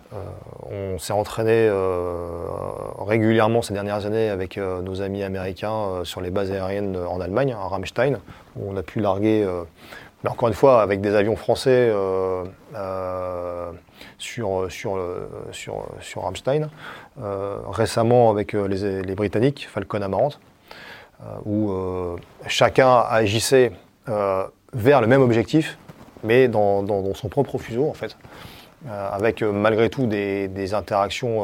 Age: 30-49